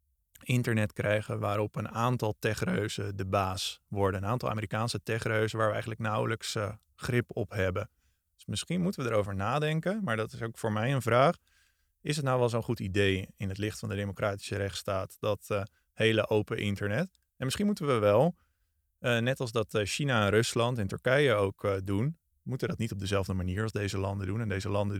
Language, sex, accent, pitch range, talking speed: Dutch, male, Dutch, 100-115 Hz, 200 wpm